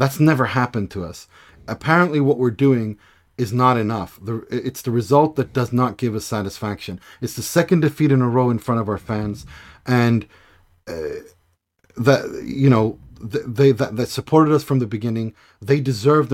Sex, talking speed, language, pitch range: male, 185 wpm, English, 110-135 Hz